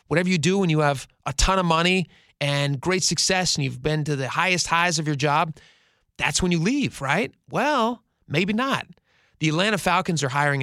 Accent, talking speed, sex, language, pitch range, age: American, 205 wpm, male, English, 140-175 Hz, 30-49